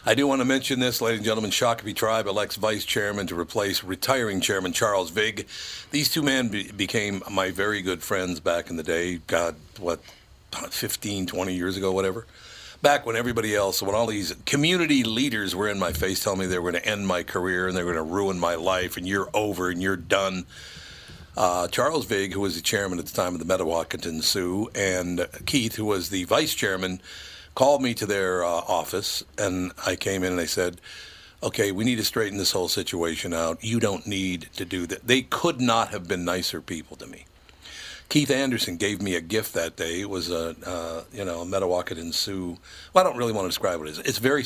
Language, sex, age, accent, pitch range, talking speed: English, male, 60-79, American, 90-110 Hz, 220 wpm